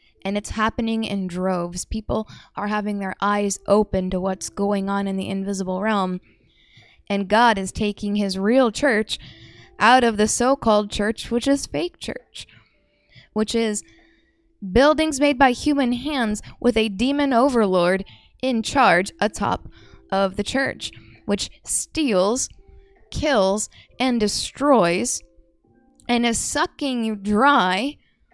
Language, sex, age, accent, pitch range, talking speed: English, female, 10-29, American, 205-255 Hz, 130 wpm